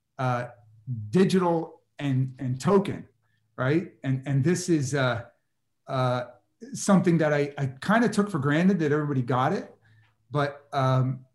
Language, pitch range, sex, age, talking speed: English, 130-165 Hz, male, 40-59, 145 wpm